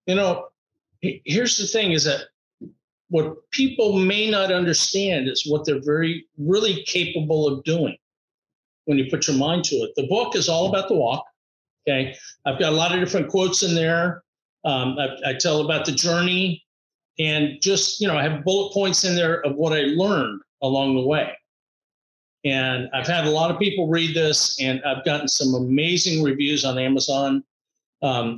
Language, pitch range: English, 145-185 Hz